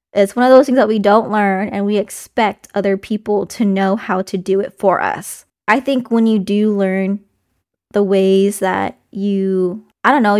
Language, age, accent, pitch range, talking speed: English, 10-29, American, 200-230 Hz, 200 wpm